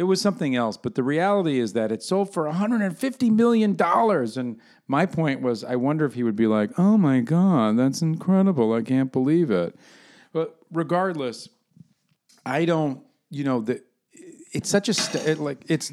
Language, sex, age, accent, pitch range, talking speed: English, male, 50-69, American, 115-165 Hz, 170 wpm